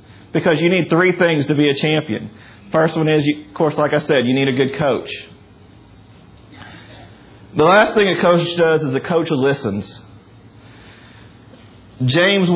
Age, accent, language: 40-59, American, English